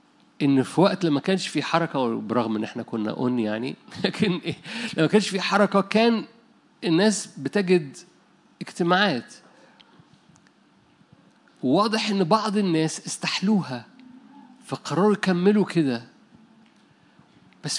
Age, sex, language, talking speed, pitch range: 50-69, male, Arabic, 110 wpm, 160-215 Hz